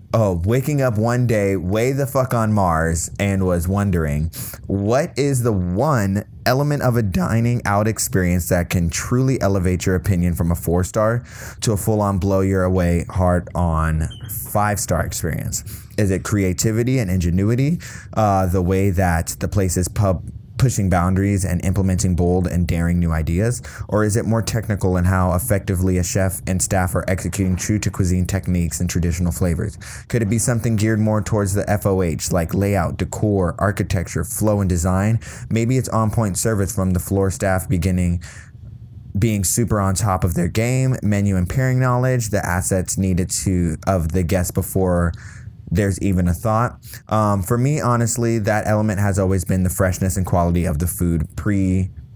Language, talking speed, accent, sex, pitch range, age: English, 175 wpm, American, male, 90-110 Hz, 20-39